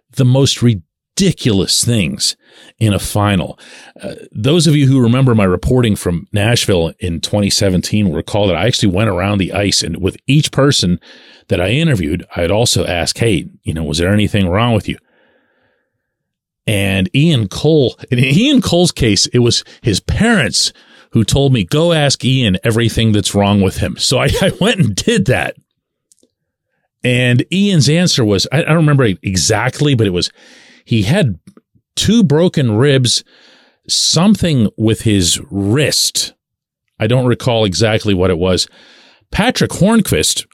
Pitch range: 100-145 Hz